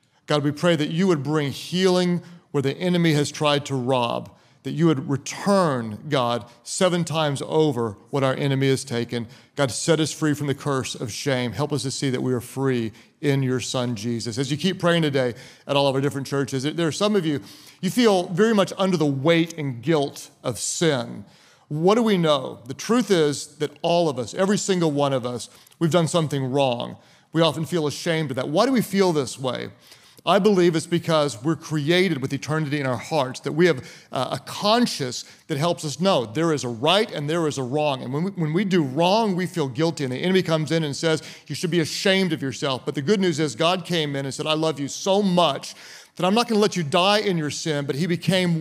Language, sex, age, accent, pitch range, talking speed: English, male, 40-59, American, 140-185 Hz, 230 wpm